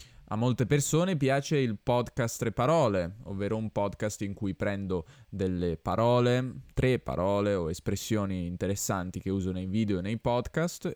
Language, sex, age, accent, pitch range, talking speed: Italian, male, 10-29, native, 95-120 Hz, 155 wpm